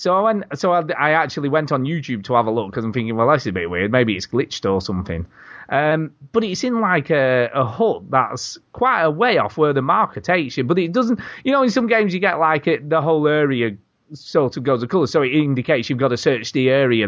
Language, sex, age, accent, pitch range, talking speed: English, male, 30-49, British, 115-155 Hz, 245 wpm